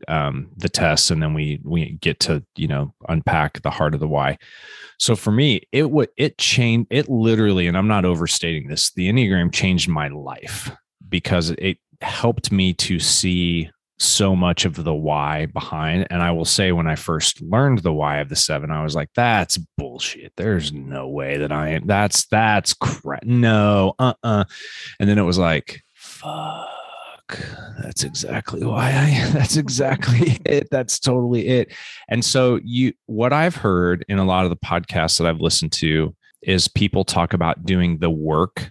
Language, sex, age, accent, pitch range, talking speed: English, male, 30-49, American, 85-115 Hz, 180 wpm